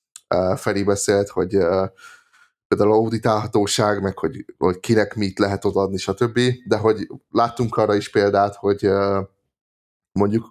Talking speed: 135 wpm